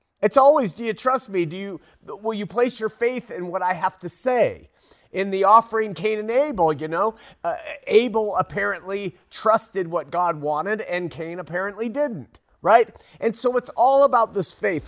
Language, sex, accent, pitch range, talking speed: English, male, American, 165-215 Hz, 185 wpm